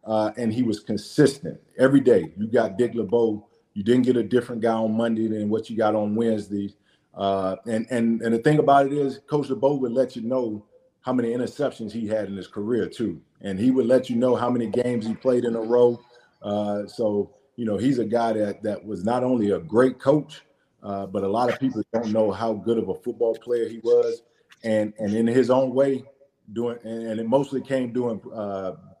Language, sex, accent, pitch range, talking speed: English, male, American, 110-130 Hz, 220 wpm